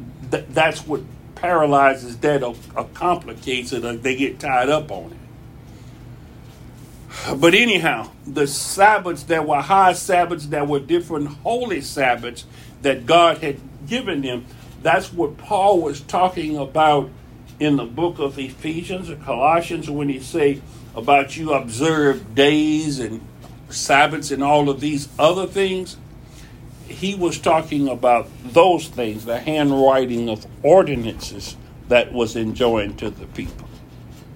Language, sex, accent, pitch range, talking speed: English, male, American, 125-155 Hz, 135 wpm